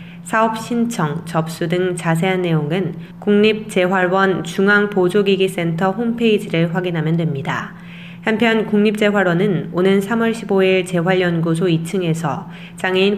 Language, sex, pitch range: Korean, female, 170-205 Hz